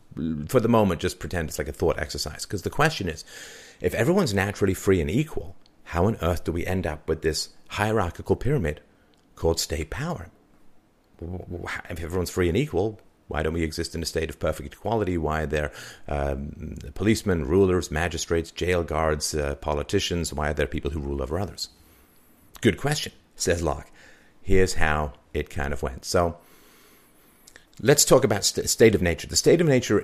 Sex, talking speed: male, 180 wpm